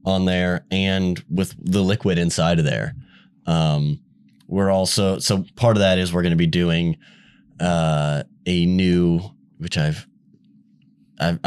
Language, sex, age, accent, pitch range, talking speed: English, male, 20-39, American, 80-100 Hz, 145 wpm